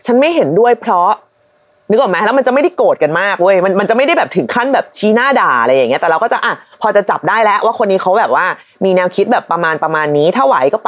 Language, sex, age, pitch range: Thai, female, 30-49, 190-285 Hz